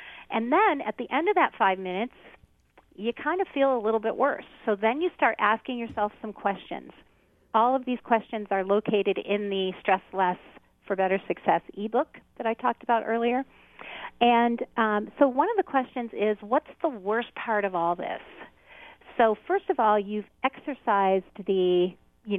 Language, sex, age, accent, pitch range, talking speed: English, female, 40-59, American, 200-265 Hz, 180 wpm